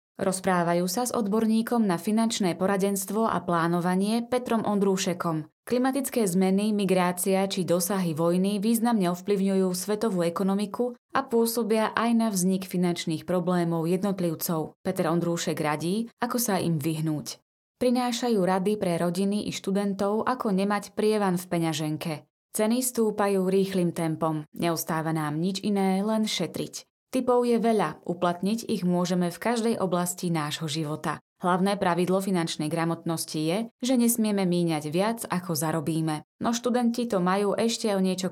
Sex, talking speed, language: female, 135 wpm, Slovak